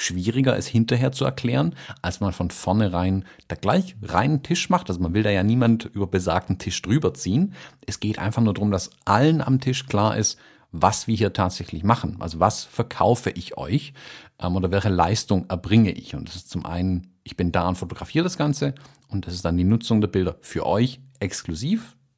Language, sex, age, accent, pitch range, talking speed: German, male, 50-69, German, 90-120 Hz, 200 wpm